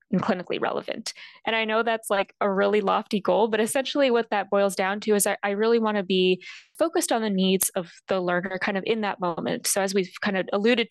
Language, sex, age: English, female, 20-39